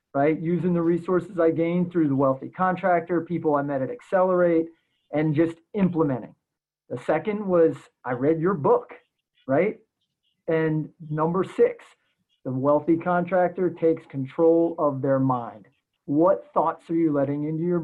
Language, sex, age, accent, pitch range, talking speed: English, male, 30-49, American, 145-180 Hz, 150 wpm